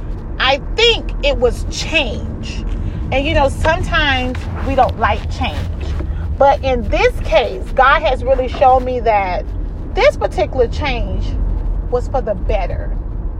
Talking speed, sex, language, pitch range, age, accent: 135 wpm, female, English, 185-255 Hz, 30-49, American